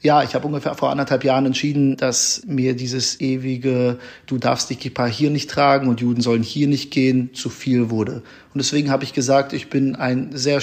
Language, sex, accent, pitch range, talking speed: German, male, German, 125-145 Hz, 210 wpm